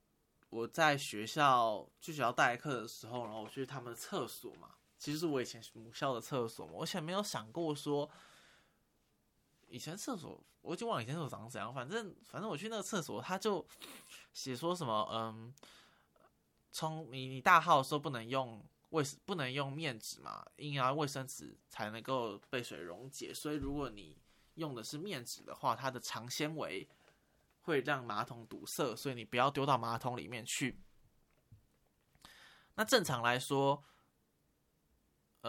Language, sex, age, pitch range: Chinese, male, 10-29, 120-155 Hz